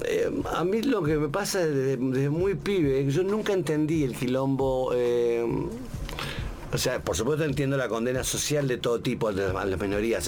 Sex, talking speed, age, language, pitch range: male, 175 wpm, 50-69, Spanish, 120-155 Hz